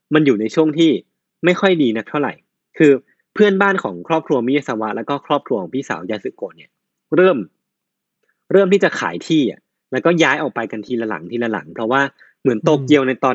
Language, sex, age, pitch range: Thai, male, 20-39, 110-150 Hz